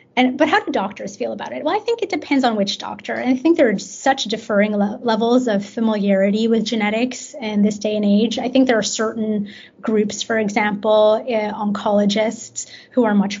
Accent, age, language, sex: American, 20-39, English, female